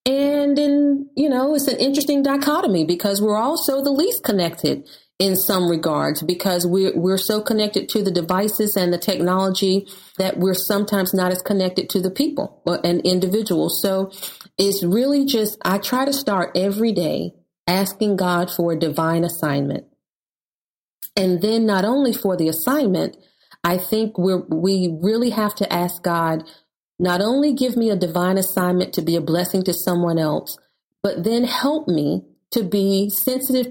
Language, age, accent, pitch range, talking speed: English, 40-59, American, 180-225 Hz, 165 wpm